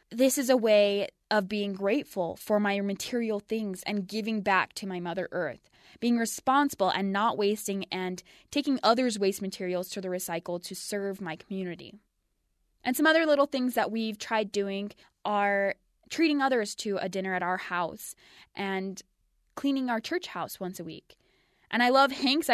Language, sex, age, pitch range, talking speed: English, female, 20-39, 190-240 Hz, 175 wpm